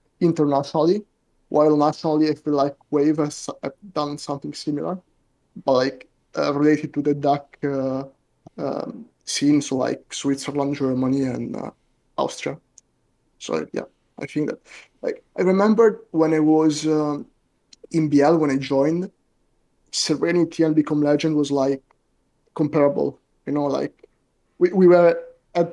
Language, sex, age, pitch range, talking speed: English, male, 20-39, 140-155 Hz, 140 wpm